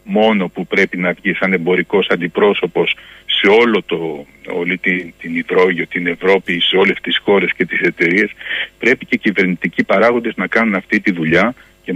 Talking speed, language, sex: 175 wpm, Greek, male